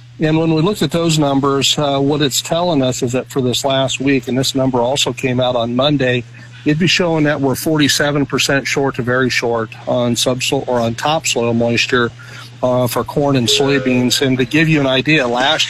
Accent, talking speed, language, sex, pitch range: American, 210 wpm, English, male, 125-145 Hz